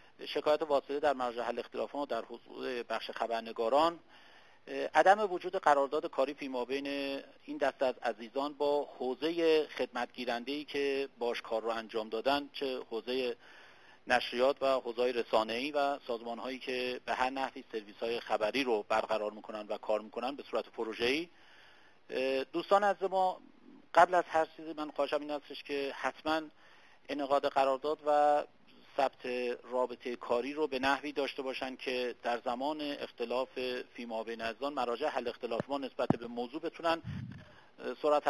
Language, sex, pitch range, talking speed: Persian, male, 120-150 Hz, 145 wpm